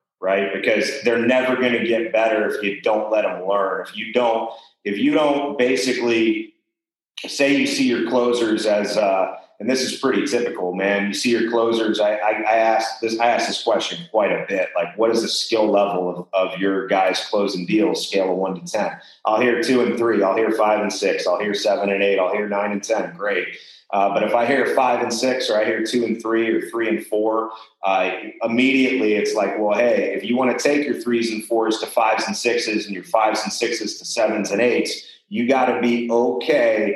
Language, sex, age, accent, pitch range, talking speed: English, male, 30-49, American, 105-120 Hz, 225 wpm